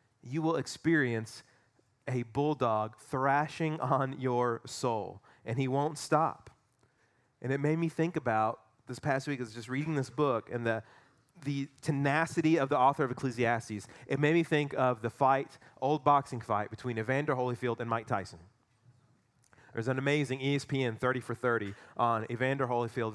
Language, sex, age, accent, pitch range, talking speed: English, male, 30-49, American, 120-155 Hz, 160 wpm